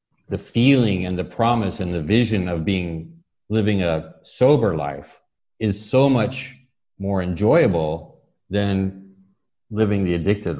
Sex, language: male, English